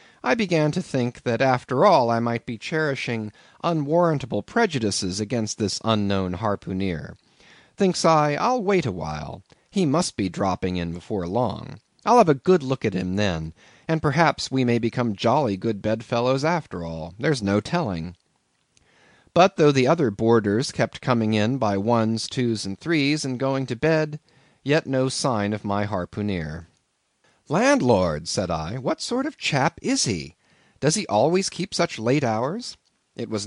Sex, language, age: male, Korean, 40-59